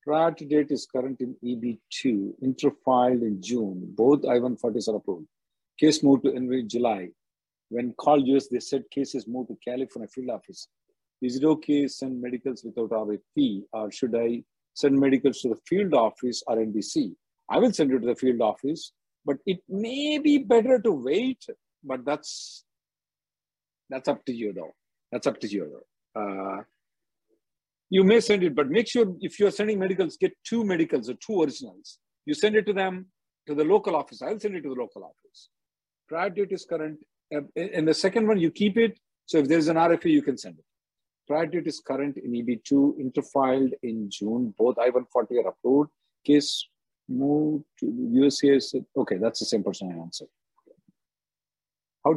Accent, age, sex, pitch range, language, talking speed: Indian, 50-69, male, 125-185 Hz, English, 185 wpm